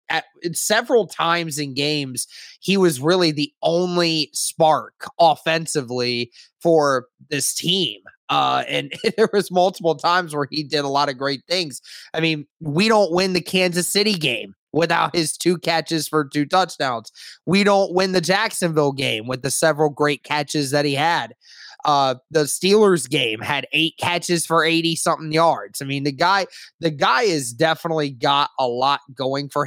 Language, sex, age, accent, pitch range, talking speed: English, male, 20-39, American, 140-170 Hz, 165 wpm